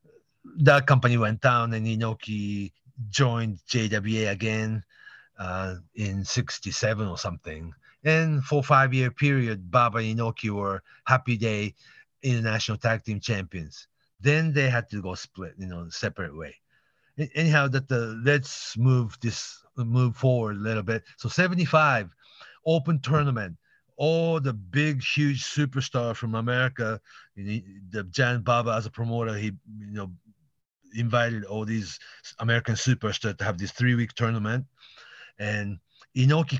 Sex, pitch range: male, 105-135 Hz